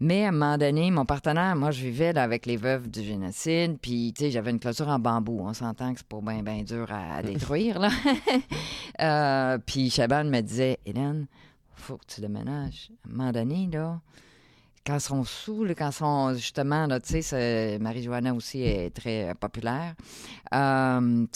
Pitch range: 115-150 Hz